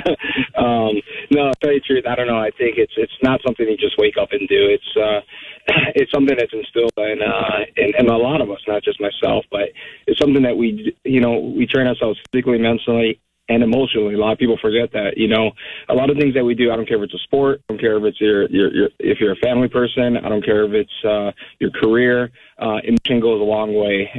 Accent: American